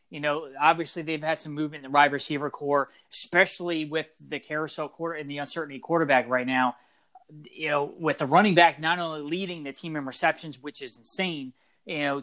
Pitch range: 140-165 Hz